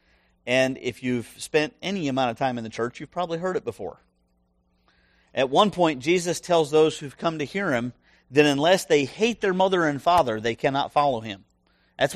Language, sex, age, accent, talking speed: English, male, 40-59, American, 195 wpm